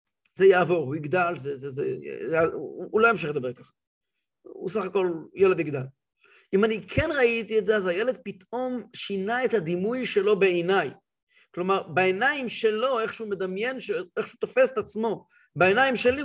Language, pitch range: English, 145-220 Hz